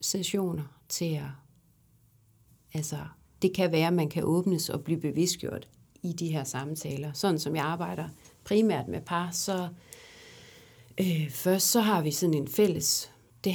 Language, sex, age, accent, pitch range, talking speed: Danish, female, 40-59, native, 135-185 Hz, 155 wpm